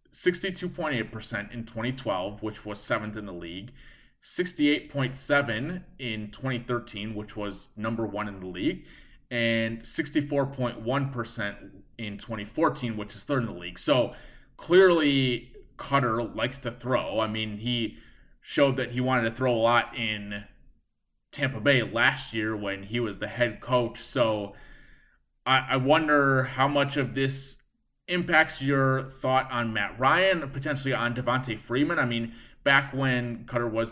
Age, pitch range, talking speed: 20-39, 110-135 Hz, 145 wpm